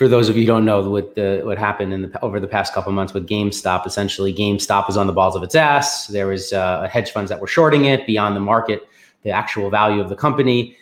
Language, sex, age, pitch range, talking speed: English, male, 30-49, 105-135 Hz, 265 wpm